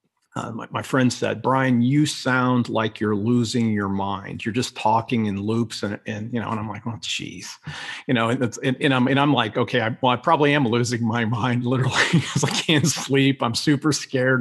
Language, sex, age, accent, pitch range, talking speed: English, male, 50-69, American, 110-130 Hz, 215 wpm